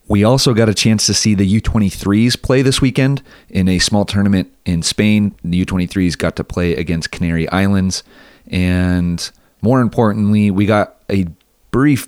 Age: 30-49